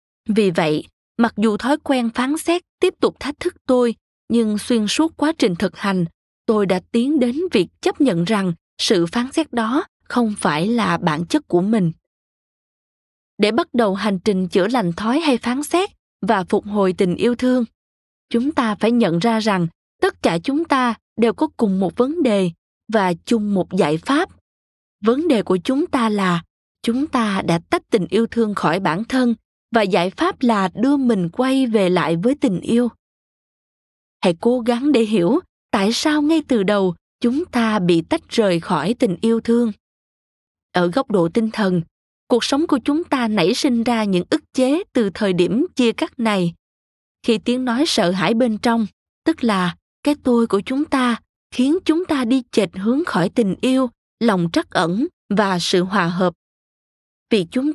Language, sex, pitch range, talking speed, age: Vietnamese, female, 190-265 Hz, 185 wpm, 20-39